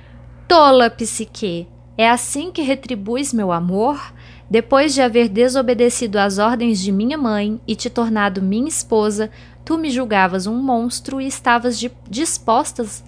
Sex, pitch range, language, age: female, 195-255 Hz, Portuguese, 20-39